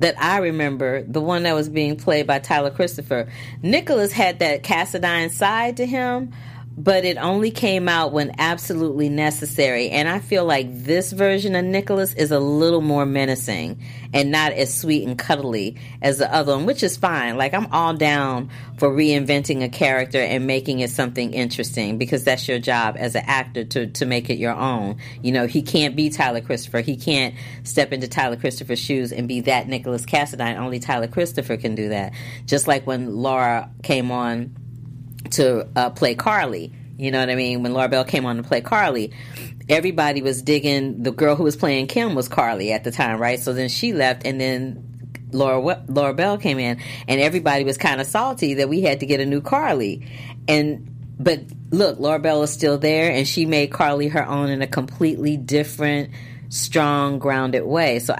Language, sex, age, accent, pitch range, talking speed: English, female, 40-59, American, 125-155 Hz, 195 wpm